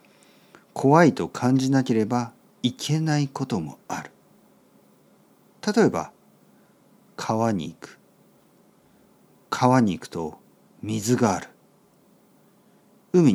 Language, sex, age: Japanese, male, 50-69